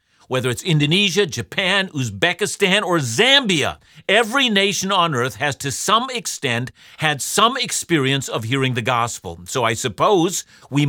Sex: male